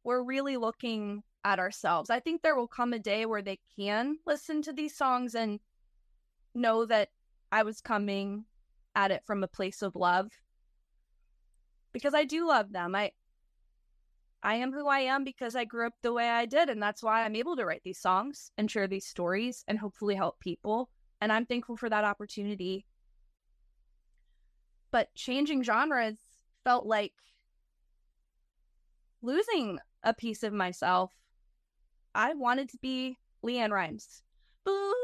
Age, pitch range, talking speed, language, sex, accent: 20-39, 210-270 Hz, 155 wpm, English, female, American